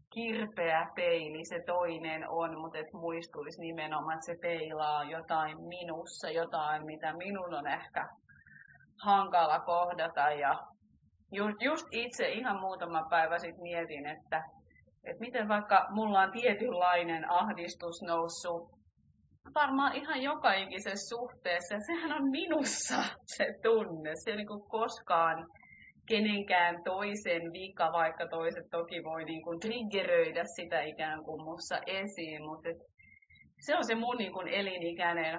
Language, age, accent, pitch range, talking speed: Finnish, 30-49, native, 165-205 Hz, 125 wpm